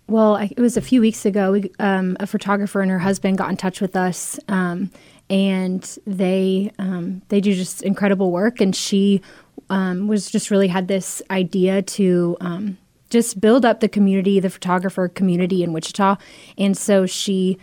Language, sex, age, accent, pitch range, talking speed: English, female, 20-39, American, 185-205 Hz, 175 wpm